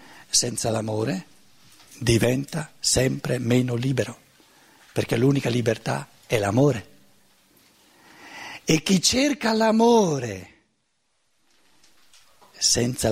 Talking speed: 75 wpm